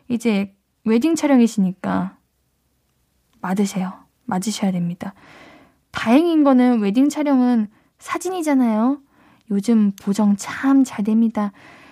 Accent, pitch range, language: native, 195-285 Hz, Korean